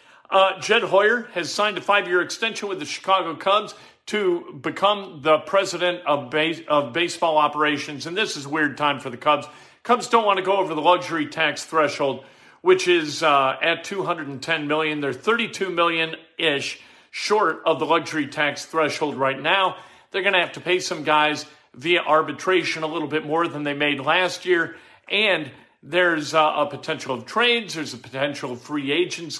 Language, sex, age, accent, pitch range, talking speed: English, male, 50-69, American, 150-205 Hz, 180 wpm